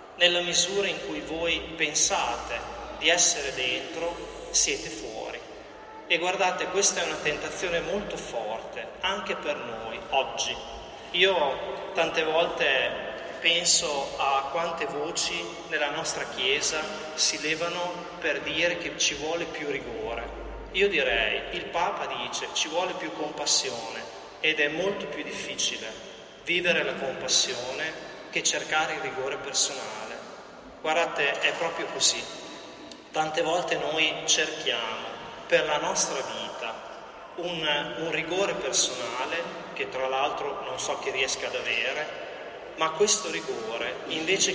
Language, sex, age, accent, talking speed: Italian, male, 30-49, native, 125 wpm